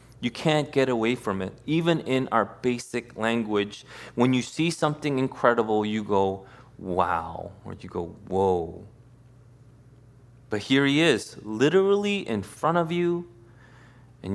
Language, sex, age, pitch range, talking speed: English, male, 20-39, 110-135 Hz, 140 wpm